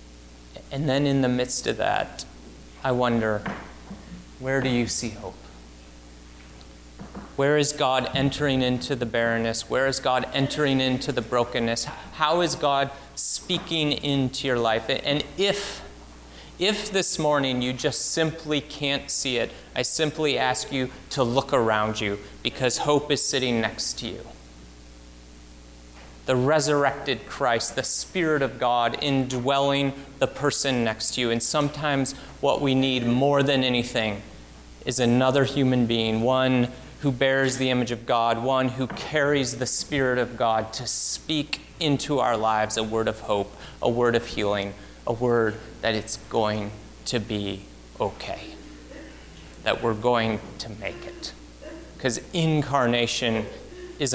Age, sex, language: 30-49, male, English